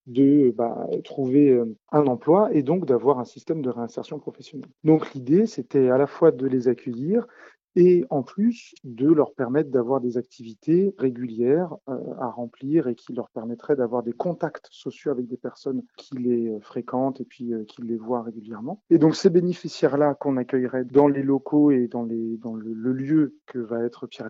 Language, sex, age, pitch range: French, male, 30-49, 125-155 Hz